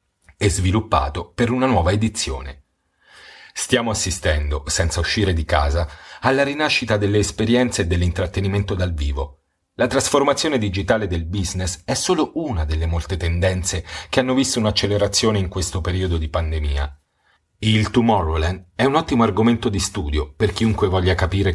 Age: 40-59